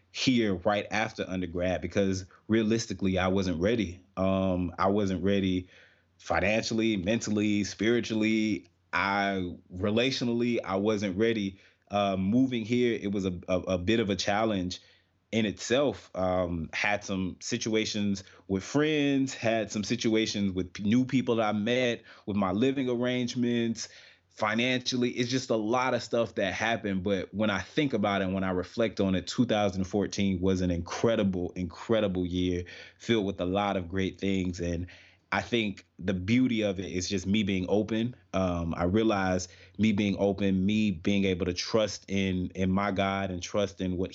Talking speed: 165 wpm